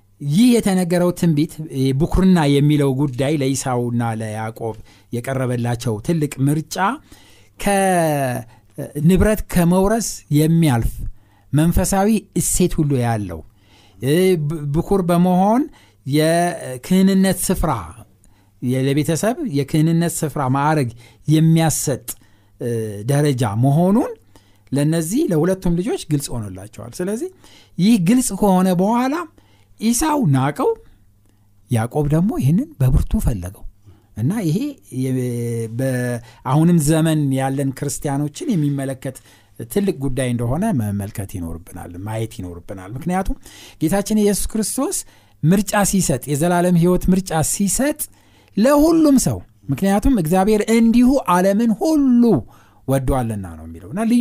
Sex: male